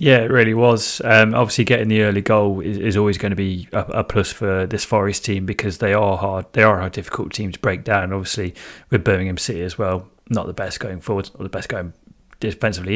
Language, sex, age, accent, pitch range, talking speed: English, male, 30-49, British, 95-110 Hz, 245 wpm